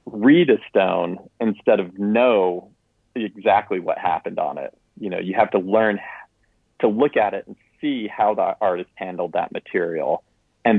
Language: English